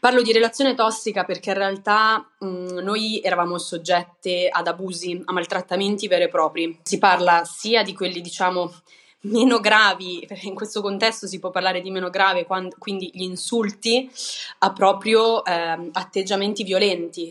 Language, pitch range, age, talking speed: Italian, 180-210 Hz, 20-39, 150 wpm